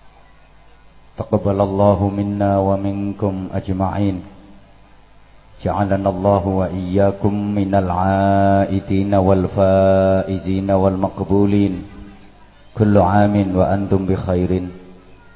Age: 30-49